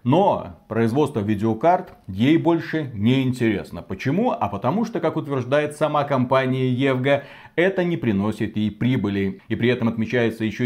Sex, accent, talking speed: male, native, 145 wpm